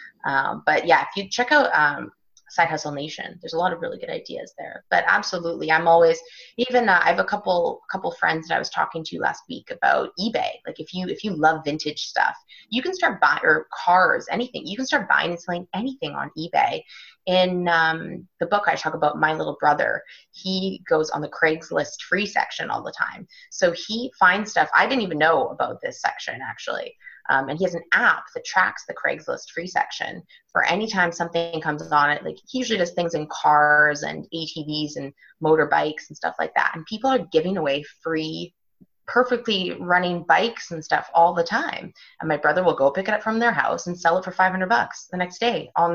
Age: 20-39